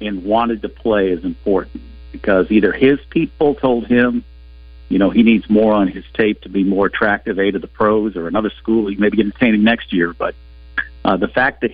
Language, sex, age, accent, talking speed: English, male, 50-69, American, 215 wpm